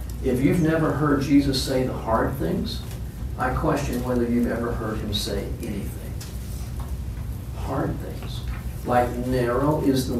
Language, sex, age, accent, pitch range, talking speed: English, male, 50-69, American, 115-140 Hz, 140 wpm